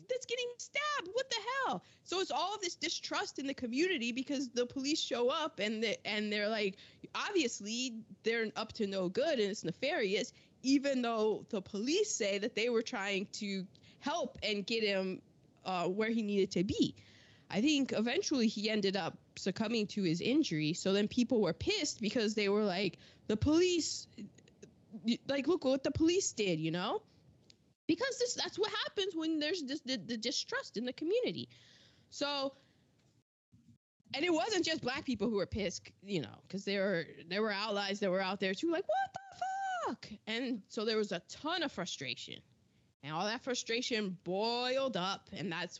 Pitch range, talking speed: 190-280 Hz, 180 wpm